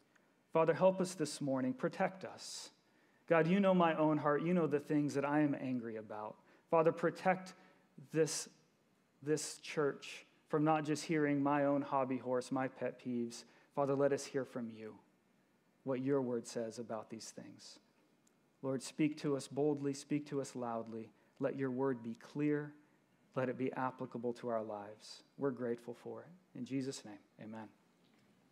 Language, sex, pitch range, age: English, male, 135-175 Hz, 40-59